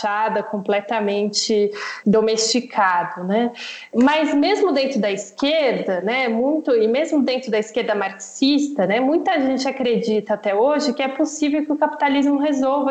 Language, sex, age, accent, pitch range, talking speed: Portuguese, female, 20-39, Brazilian, 220-290 Hz, 135 wpm